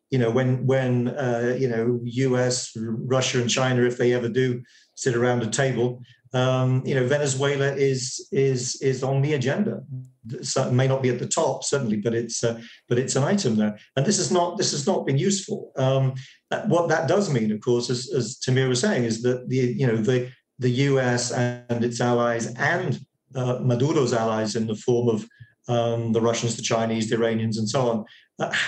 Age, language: 50-69, English